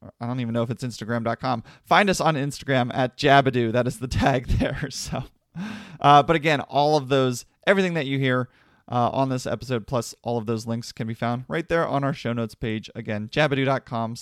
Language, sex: English, male